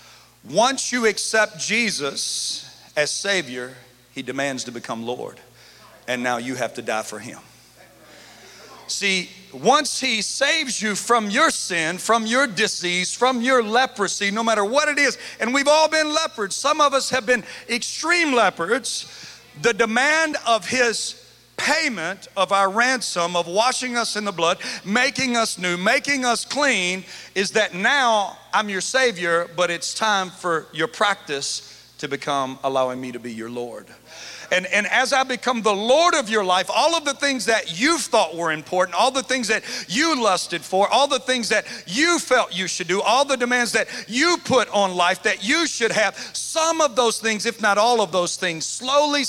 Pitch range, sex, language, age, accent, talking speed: 175-255 Hz, male, English, 40-59, American, 180 wpm